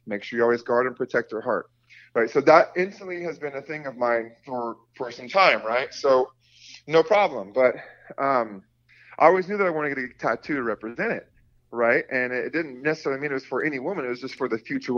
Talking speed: 235 wpm